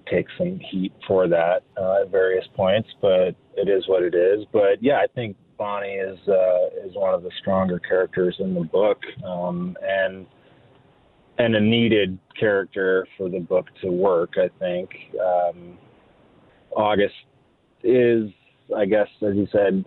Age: 30-49